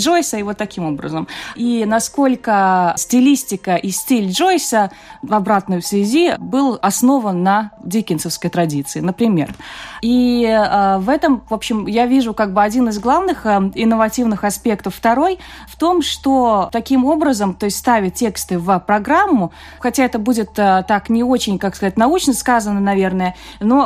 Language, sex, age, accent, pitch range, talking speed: Russian, female, 20-39, native, 200-255 Hz, 155 wpm